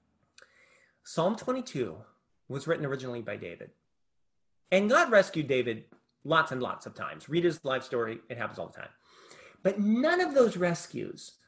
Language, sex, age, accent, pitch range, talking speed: English, male, 30-49, American, 140-195 Hz, 155 wpm